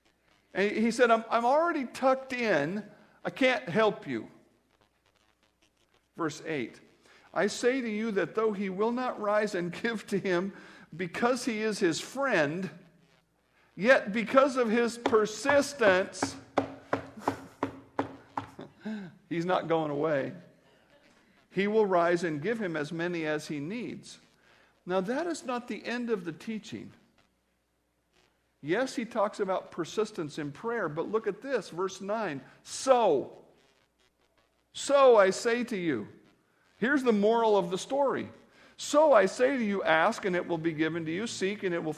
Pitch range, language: 175-230 Hz, English